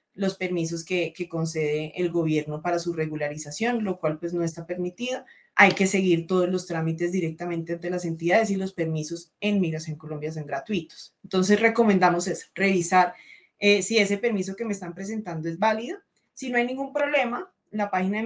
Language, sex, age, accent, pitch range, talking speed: Spanish, female, 20-39, Colombian, 170-220 Hz, 185 wpm